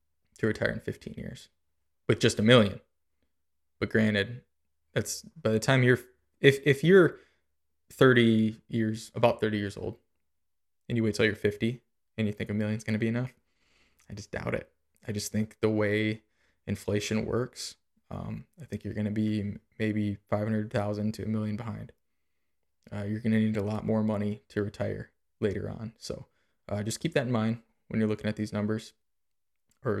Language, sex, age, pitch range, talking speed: English, male, 20-39, 100-110 Hz, 180 wpm